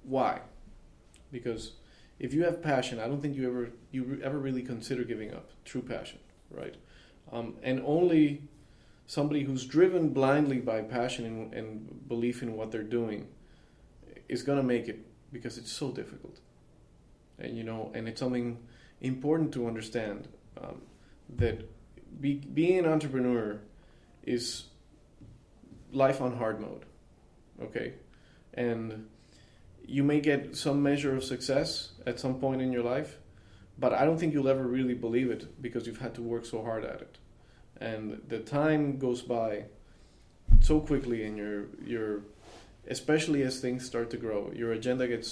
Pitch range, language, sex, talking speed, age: 110-135 Hz, English, male, 155 wpm, 30-49